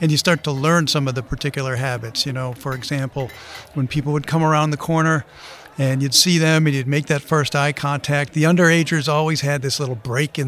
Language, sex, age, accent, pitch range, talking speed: English, male, 50-69, American, 130-160 Hz, 230 wpm